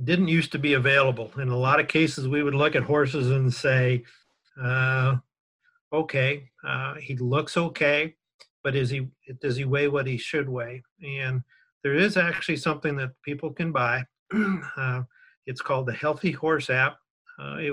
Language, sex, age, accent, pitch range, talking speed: English, male, 50-69, American, 130-150 Hz, 175 wpm